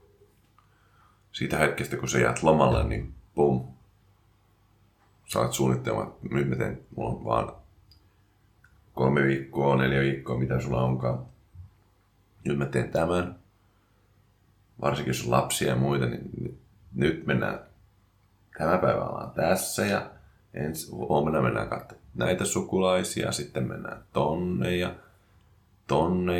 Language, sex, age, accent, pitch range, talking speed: English, male, 30-49, Finnish, 75-100 Hz, 110 wpm